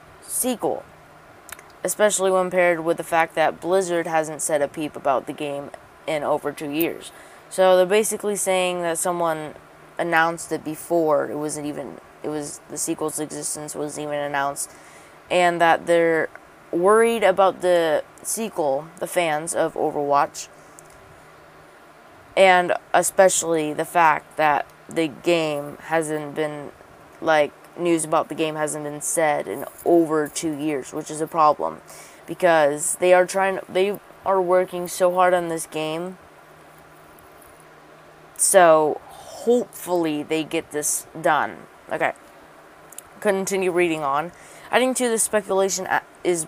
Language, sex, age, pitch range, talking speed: English, female, 20-39, 155-190 Hz, 135 wpm